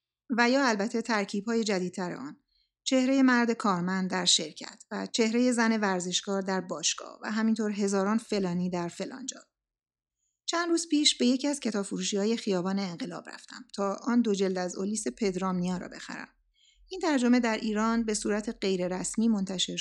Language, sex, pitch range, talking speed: Persian, female, 185-235 Hz, 160 wpm